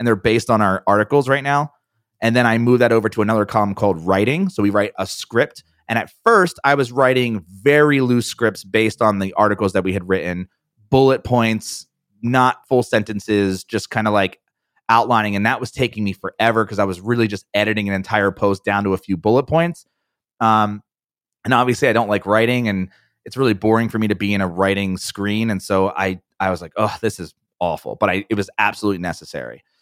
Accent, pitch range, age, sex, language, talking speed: American, 100-120 Hz, 30-49, male, English, 215 wpm